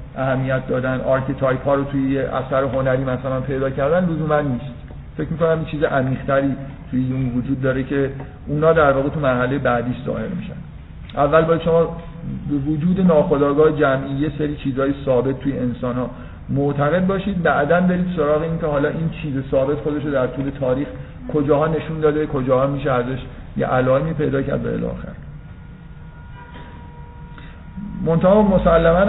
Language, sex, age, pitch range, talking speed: Persian, male, 50-69, 130-155 Hz, 140 wpm